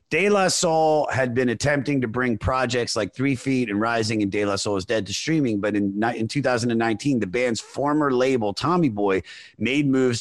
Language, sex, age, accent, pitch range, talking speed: English, male, 30-49, American, 100-130 Hz, 200 wpm